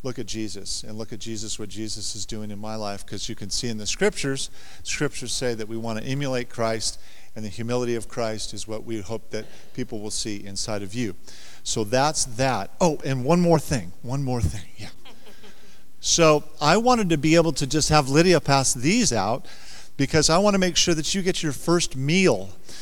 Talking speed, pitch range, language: 220 wpm, 120-170 Hz, English